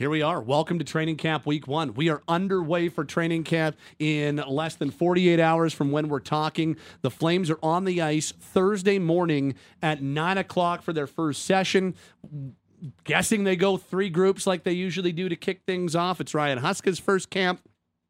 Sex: male